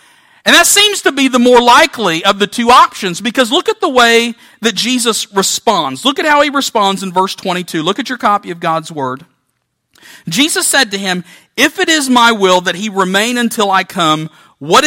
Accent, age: American, 50-69